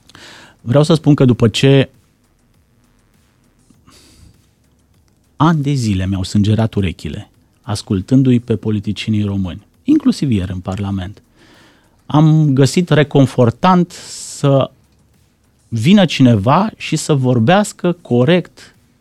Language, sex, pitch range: Romanian, male, 110-150 Hz